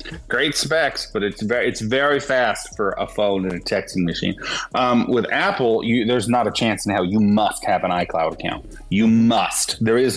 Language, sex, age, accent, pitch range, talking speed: English, male, 30-49, American, 95-130 Hz, 205 wpm